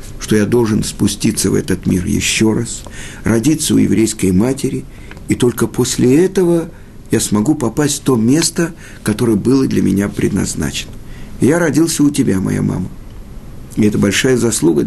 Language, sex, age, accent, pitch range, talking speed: Russian, male, 50-69, native, 105-150 Hz, 155 wpm